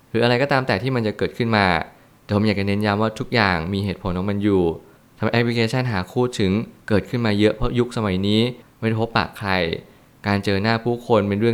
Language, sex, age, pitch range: Thai, male, 20-39, 100-120 Hz